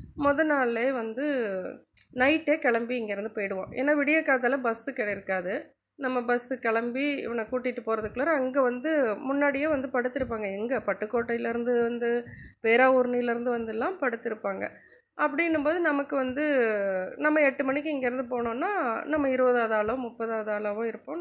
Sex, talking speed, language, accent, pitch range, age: female, 120 wpm, Tamil, native, 225-285 Hz, 20-39